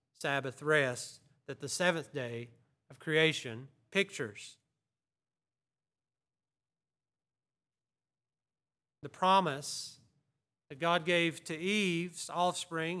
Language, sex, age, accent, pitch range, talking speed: English, male, 40-59, American, 145-205 Hz, 80 wpm